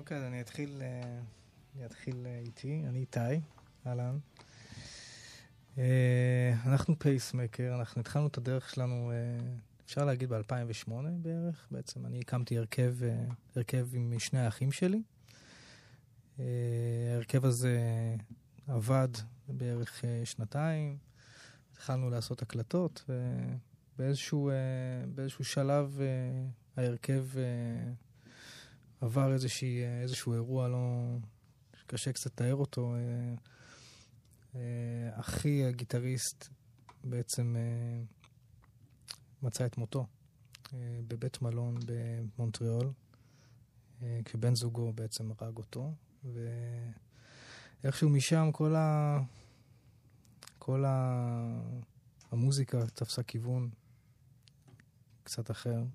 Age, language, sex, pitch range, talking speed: 20-39, Hebrew, male, 120-130 Hz, 80 wpm